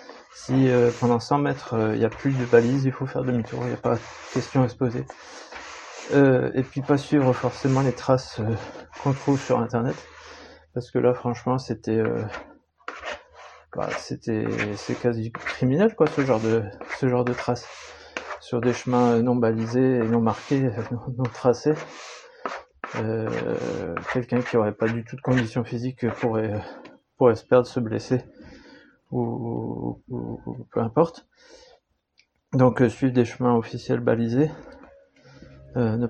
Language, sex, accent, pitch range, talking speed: French, male, French, 115-130 Hz, 165 wpm